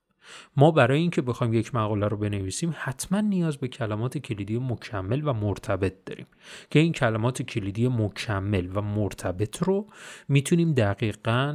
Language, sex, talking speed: Persian, male, 140 wpm